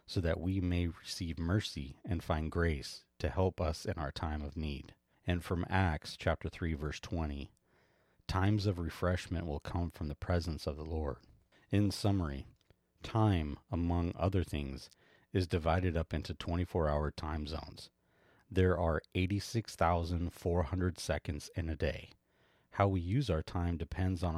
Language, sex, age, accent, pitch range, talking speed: English, male, 40-59, American, 80-95 Hz, 155 wpm